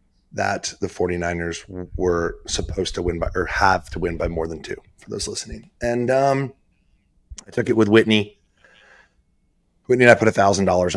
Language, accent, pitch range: English, American, 90-115 Hz